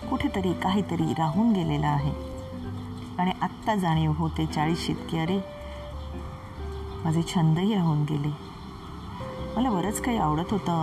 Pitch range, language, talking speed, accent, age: 150-210 Hz, Marathi, 115 wpm, native, 30-49